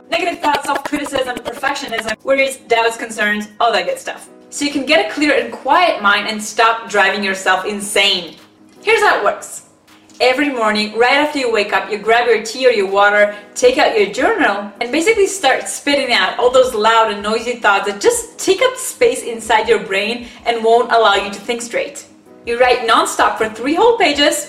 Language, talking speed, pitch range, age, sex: English, 195 wpm, 215-285 Hz, 20-39, female